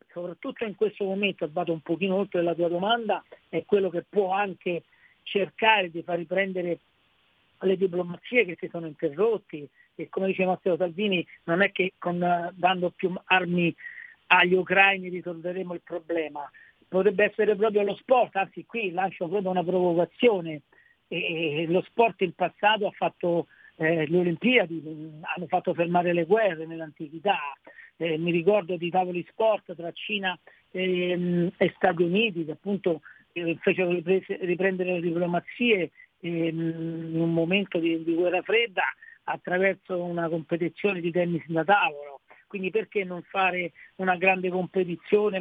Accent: native